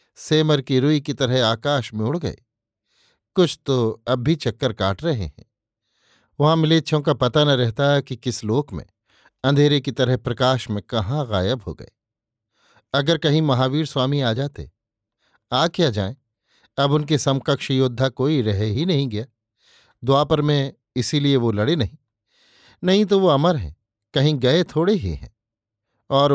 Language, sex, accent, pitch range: Hindi, male, native, 120-150 Hz